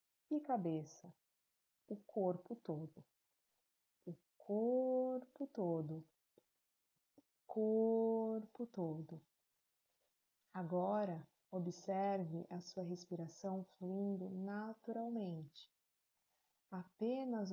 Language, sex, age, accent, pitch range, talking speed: Portuguese, female, 30-49, Brazilian, 175-225 Hz, 65 wpm